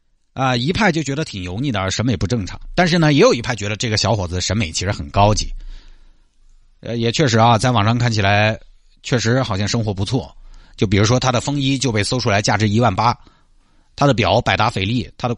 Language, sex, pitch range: Chinese, male, 95-125 Hz